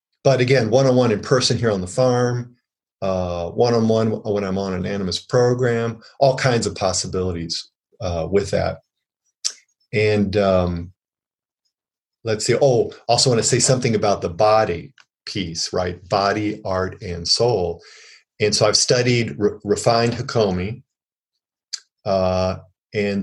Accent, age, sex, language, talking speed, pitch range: American, 40-59, male, English, 130 wpm, 95-125 Hz